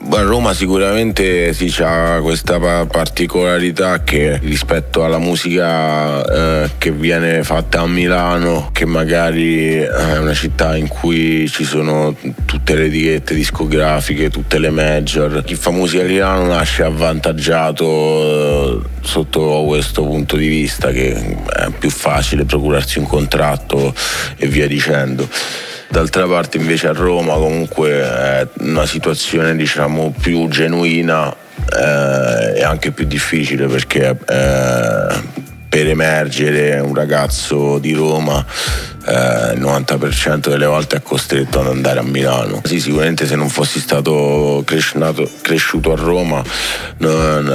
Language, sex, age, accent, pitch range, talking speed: Italian, male, 30-49, native, 75-80 Hz, 130 wpm